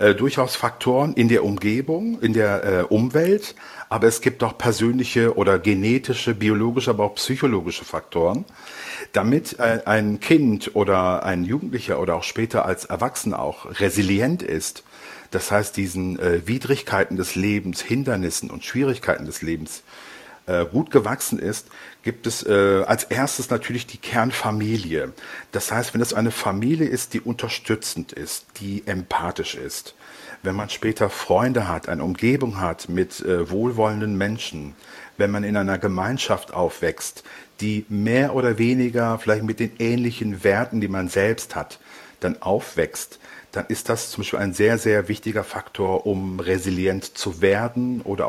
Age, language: 50-69, German